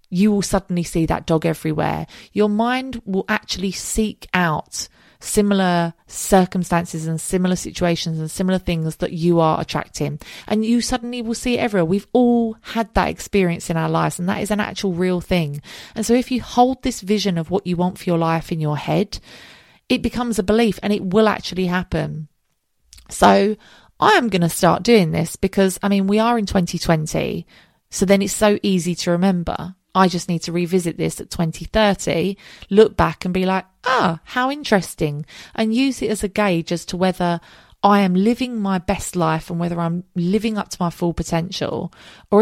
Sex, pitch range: female, 170-220 Hz